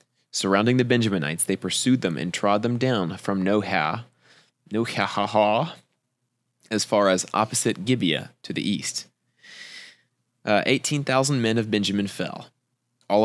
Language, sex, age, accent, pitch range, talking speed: English, male, 20-39, American, 90-115 Hz, 120 wpm